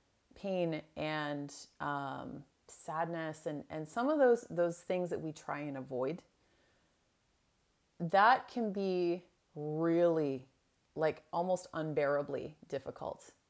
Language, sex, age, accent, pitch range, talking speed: English, female, 30-49, American, 155-200 Hz, 105 wpm